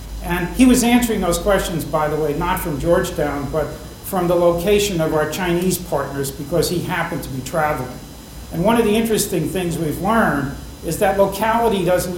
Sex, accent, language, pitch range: male, American, English, 150-180 Hz